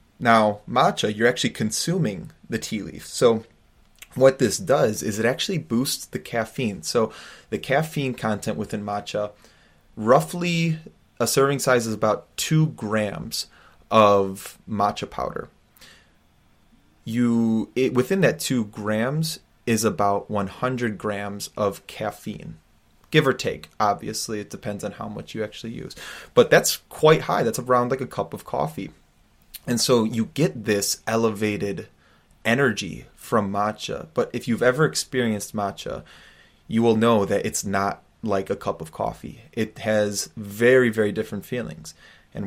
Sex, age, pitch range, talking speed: male, 30-49, 105-125 Hz, 145 wpm